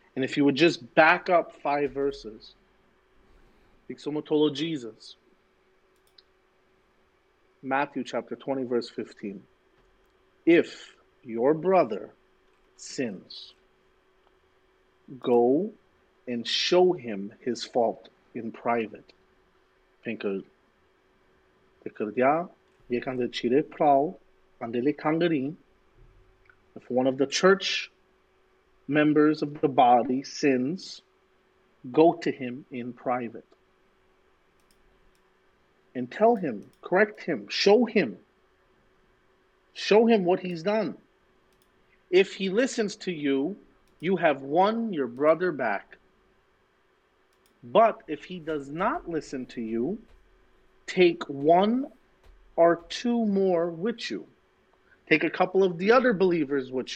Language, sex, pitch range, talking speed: English, male, 130-185 Hz, 95 wpm